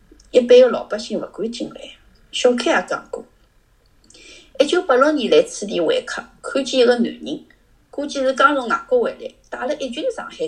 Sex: female